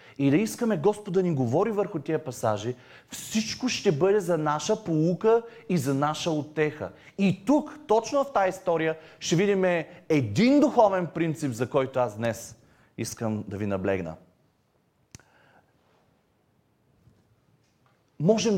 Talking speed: 130 wpm